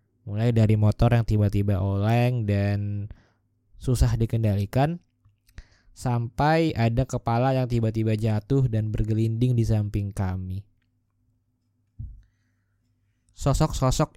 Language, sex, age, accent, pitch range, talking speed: Indonesian, male, 20-39, native, 100-115 Hz, 90 wpm